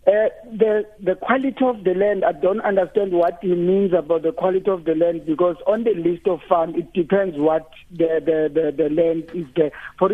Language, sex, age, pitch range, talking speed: English, male, 50-69, 160-185 Hz, 215 wpm